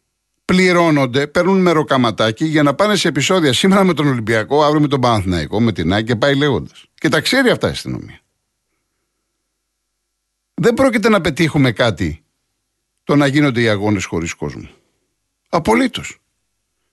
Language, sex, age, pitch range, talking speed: Greek, male, 50-69, 110-160 Hz, 145 wpm